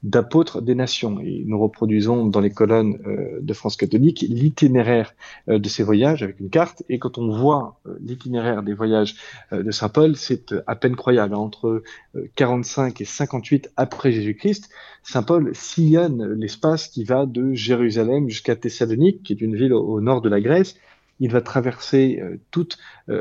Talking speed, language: 185 wpm, French